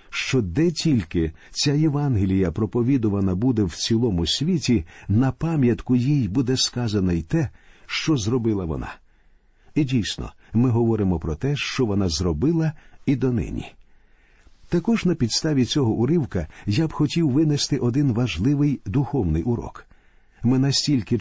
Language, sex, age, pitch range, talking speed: Ukrainian, male, 50-69, 110-145 Hz, 130 wpm